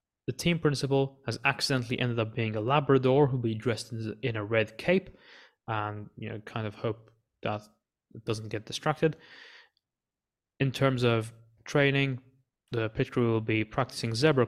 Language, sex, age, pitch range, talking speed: English, male, 20-39, 110-130 Hz, 160 wpm